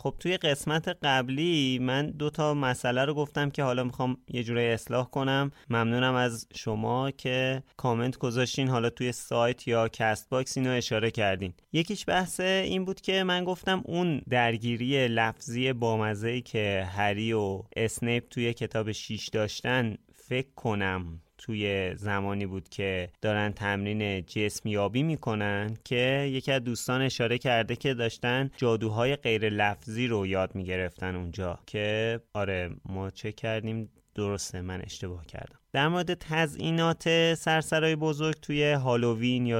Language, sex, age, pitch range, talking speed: Persian, male, 30-49, 110-140 Hz, 140 wpm